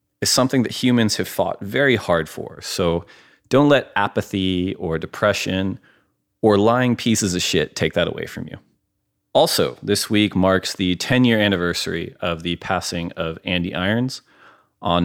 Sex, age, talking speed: male, 30-49, 155 wpm